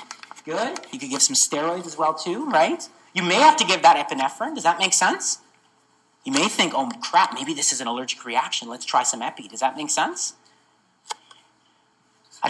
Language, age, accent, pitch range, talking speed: English, 30-49, American, 170-230 Hz, 195 wpm